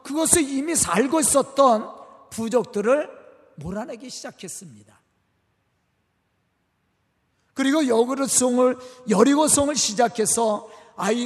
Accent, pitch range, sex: native, 205-280 Hz, male